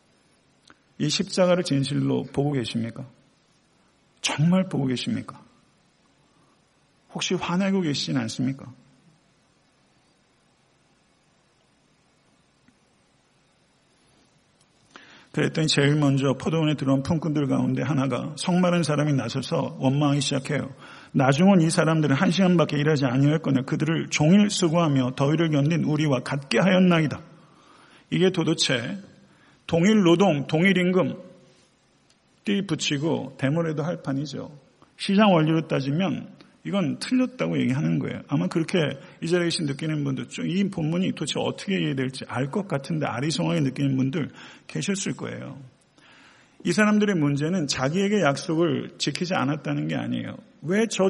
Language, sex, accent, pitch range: Korean, male, native, 140-180 Hz